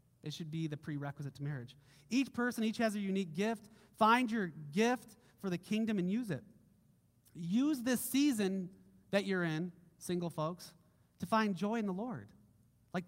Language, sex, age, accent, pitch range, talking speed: English, male, 30-49, American, 155-230 Hz, 175 wpm